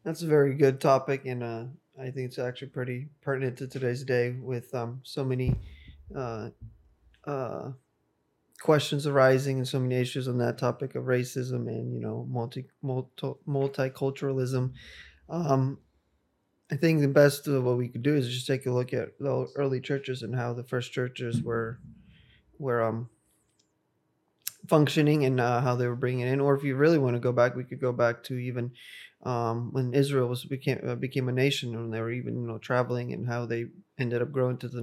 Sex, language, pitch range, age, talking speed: male, English, 120-140 Hz, 20-39, 195 wpm